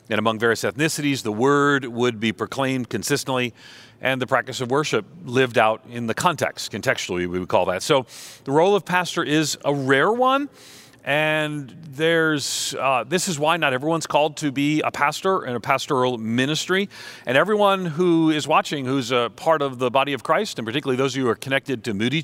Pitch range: 120-160 Hz